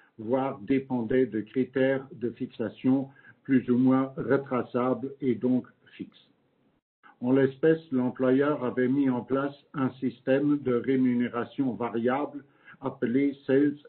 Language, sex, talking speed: English, male, 115 wpm